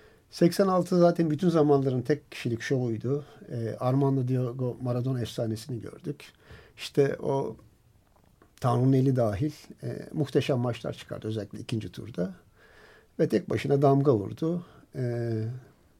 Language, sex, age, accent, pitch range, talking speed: Turkish, male, 50-69, native, 110-145 Hz, 115 wpm